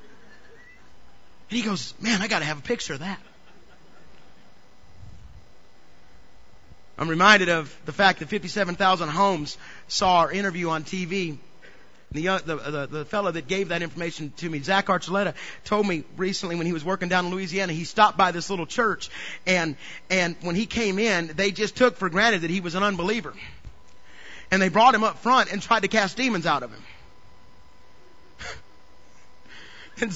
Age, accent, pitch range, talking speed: 40-59, American, 175-240 Hz, 170 wpm